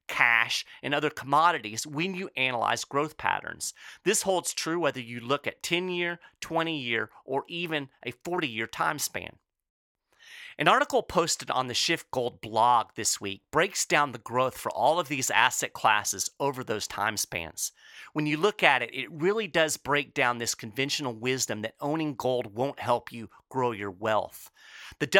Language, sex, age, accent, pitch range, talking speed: English, male, 40-59, American, 120-170 Hz, 170 wpm